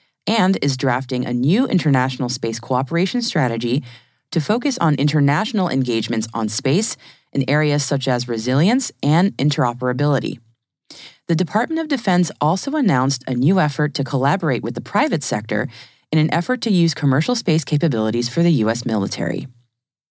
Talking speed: 150 wpm